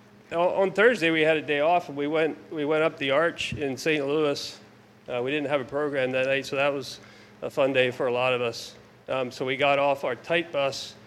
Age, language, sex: 40-59, English, male